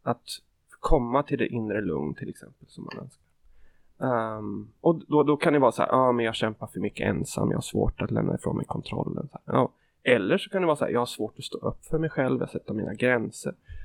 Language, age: Swedish, 20-39